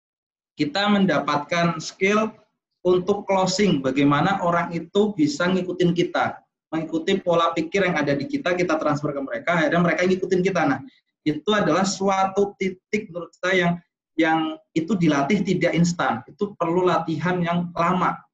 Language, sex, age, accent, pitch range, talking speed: Indonesian, male, 20-39, native, 145-185 Hz, 145 wpm